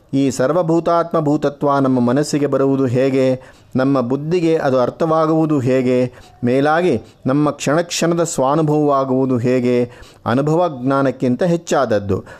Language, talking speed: Kannada, 100 wpm